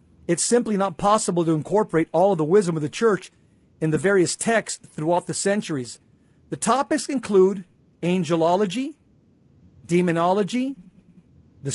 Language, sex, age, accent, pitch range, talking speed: English, male, 50-69, American, 170-225 Hz, 135 wpm